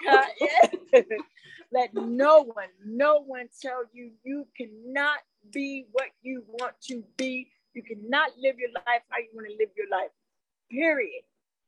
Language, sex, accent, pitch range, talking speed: English, female, American, 245-310 Hz, 145 wpm